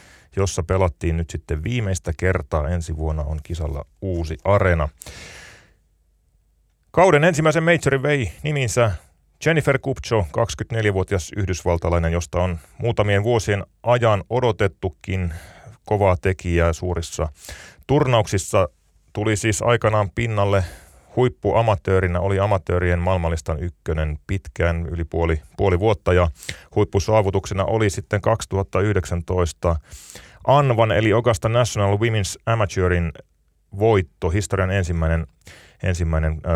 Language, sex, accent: Finnish, male, native